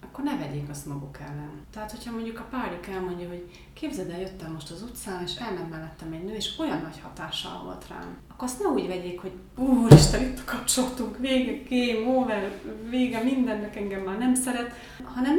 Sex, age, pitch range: female, 30-49, 185-225 Hz